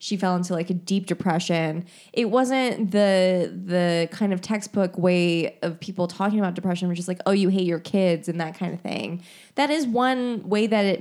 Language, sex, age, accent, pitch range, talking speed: English, female, 20-39, American, 170-205 Hz, 215 wpm